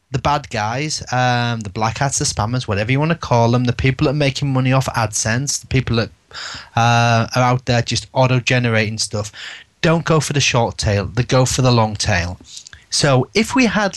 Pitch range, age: 115-145 Hz, 30-49